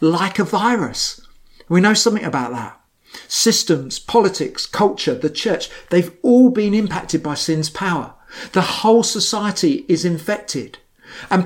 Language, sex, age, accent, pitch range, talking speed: English, male, 50-69, British, 160-210 Hz, 135 wpm